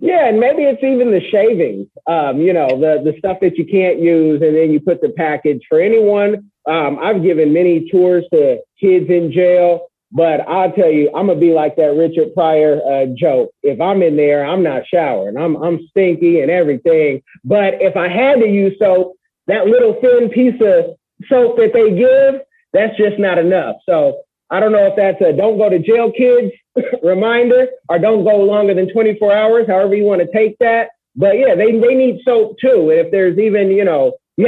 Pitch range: 165-230 Hz